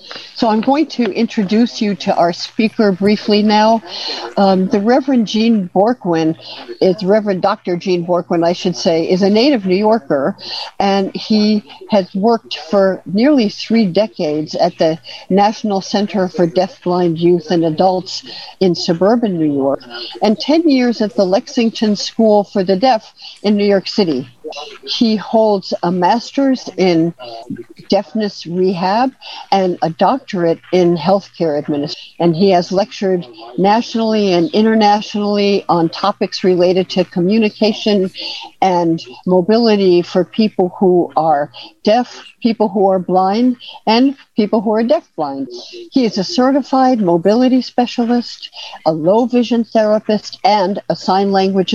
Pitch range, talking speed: 180-225 Hz, 140 wpm